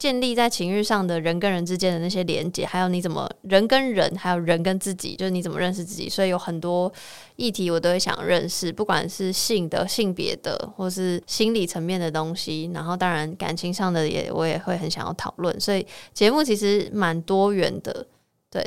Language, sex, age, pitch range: Chinese, female, 20-39, 170-200 Hz